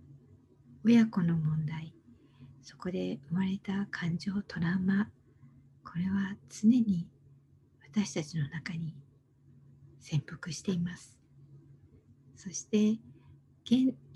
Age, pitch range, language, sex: 50-69, 135-205 Hz, Japanese, female